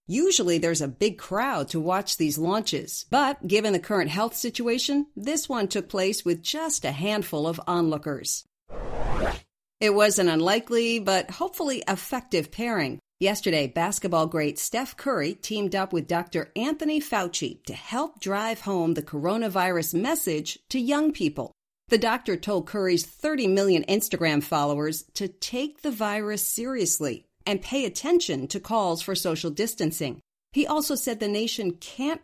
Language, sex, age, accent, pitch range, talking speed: English, female, 50-69, American, 170-230 Hz, 150 wpm